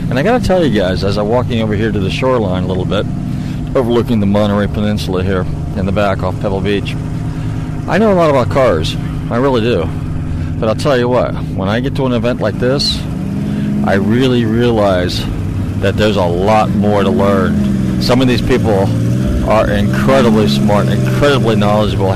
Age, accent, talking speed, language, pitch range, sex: 40-59, American, 185 wpm, English, 95-120 Hz, male